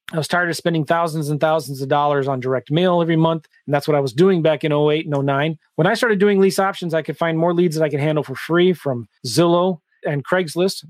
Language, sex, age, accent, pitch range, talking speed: English, male, 30-49, American, 150-185 Hz, 260 wpm